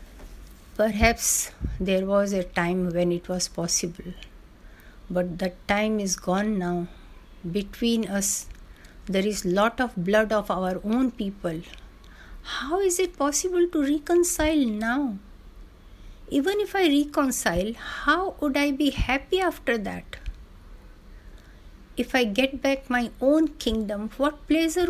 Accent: native